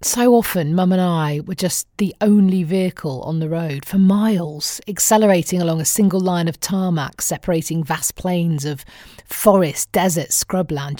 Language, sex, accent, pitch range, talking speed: English, female, British, 165-230 Hz, 160 wpm